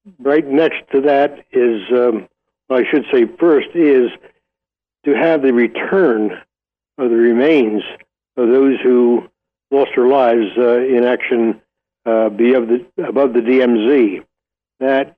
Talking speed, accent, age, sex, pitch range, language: 140 wpm, American, 60-79, male, 115-140 Hz, English